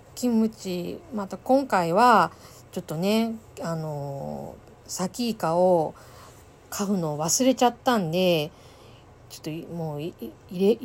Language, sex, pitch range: Japanese, female, 125-205 Hz